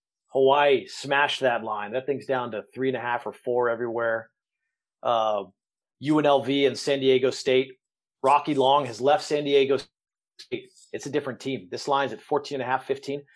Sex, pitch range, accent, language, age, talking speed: male, 120-145 Hz, American, English, 30-49, 180 wpm